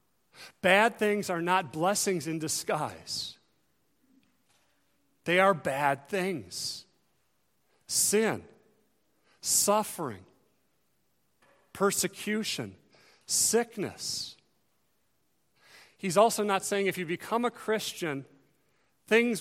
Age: 40-59